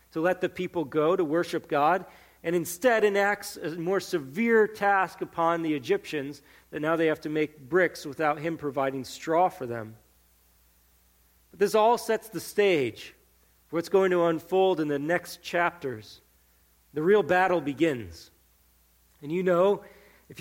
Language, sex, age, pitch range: English, male, 40-59, 115-180 Hz